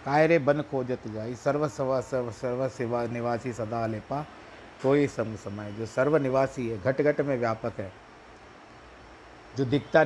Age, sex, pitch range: 50-69, male, 115-135 Hz